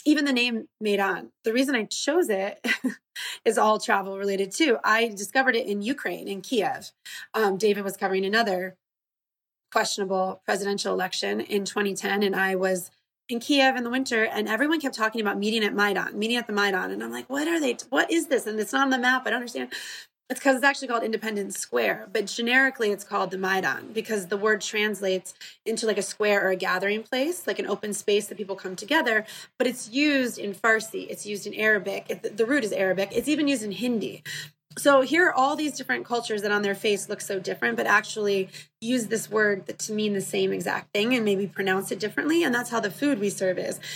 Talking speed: 215 wpm